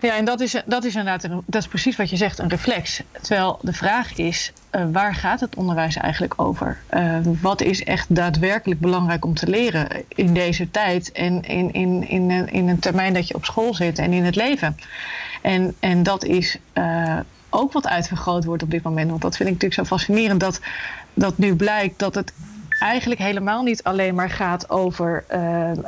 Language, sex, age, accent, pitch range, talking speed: Dutch, female, 30-49, Dutch, 175-205 Hz, 190 wpm